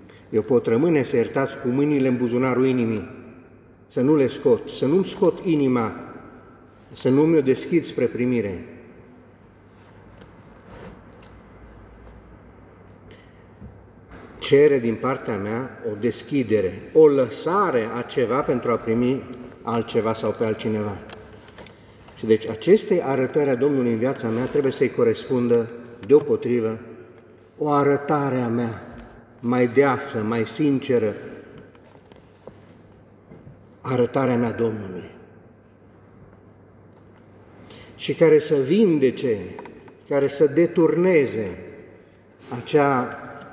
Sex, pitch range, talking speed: male, 105-135 Hz, 100 wpm